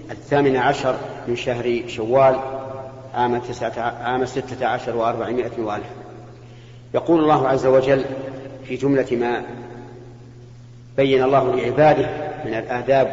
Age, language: 50-69, Arabic